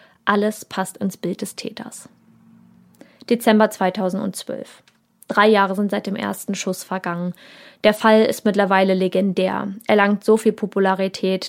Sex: female